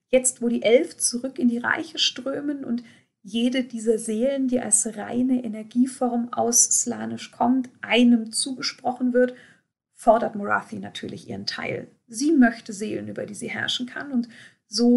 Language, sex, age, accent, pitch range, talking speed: German, female, 40-59, German, 220-245 Hz, 150 wpm